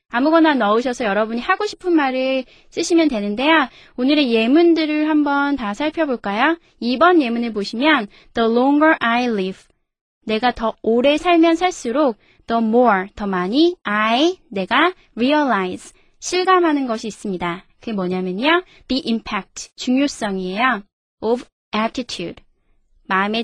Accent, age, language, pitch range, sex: native, 20-39, Korean, 215-310 Hz, female